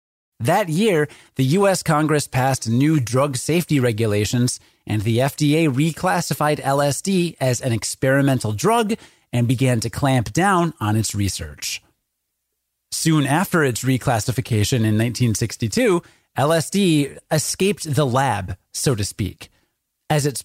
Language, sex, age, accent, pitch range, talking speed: English, male, 30-49, American, 120-165 Hz, 125 wpm